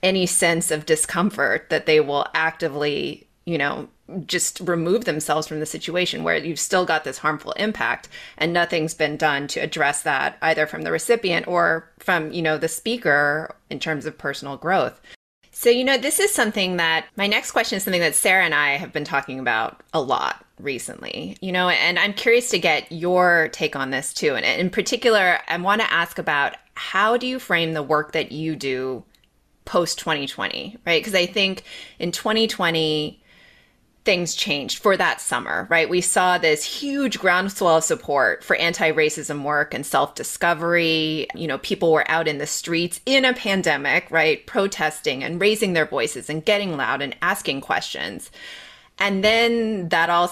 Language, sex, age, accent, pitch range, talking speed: English, female, 30-49, American, 155-195 Hz, 180 wpm